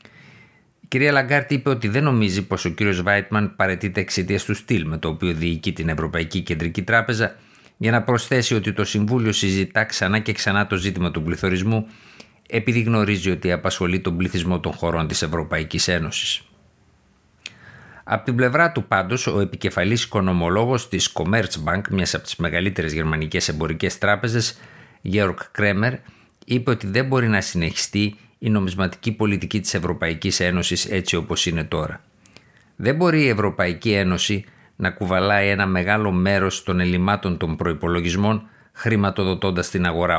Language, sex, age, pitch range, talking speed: Greek, male, 50-69, 90-110 Hz, 150 wpm